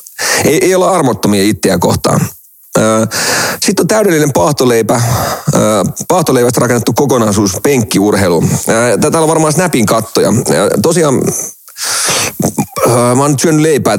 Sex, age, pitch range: male, 40-59, 105-135 Hz